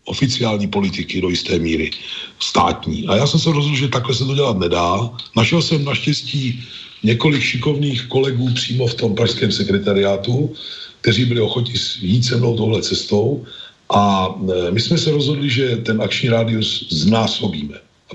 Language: Czech